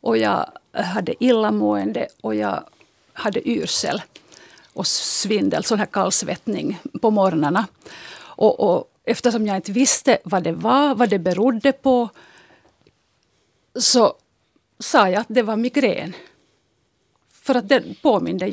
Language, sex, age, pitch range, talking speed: Finnish, female, 50-69, 195-250 Hz, 125 wpm